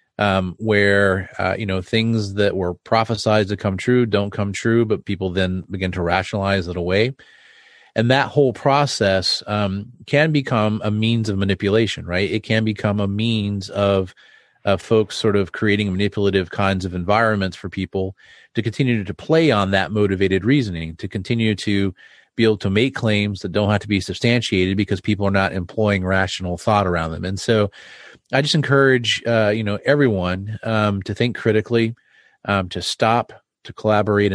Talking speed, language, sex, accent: 175 wpm, English, male, American